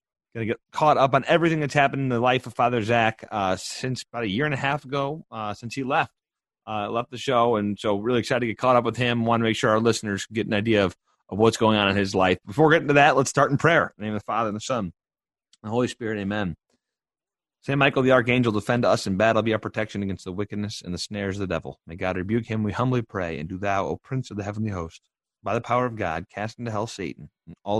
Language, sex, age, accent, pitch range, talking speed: English, male, 30-49, American, 100-130 Hz, 280 wpm